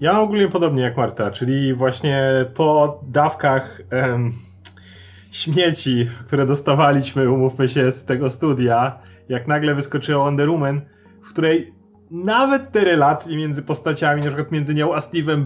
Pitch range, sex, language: 135-175 Hz, male, Polish